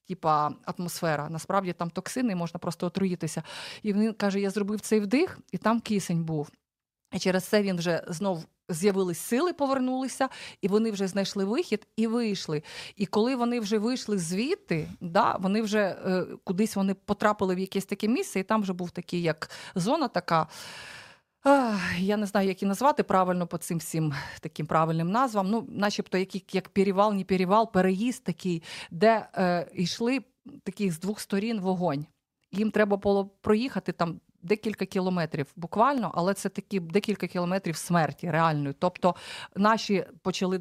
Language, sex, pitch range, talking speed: Ukrainian, female, 175-210 Hz, 155 wpm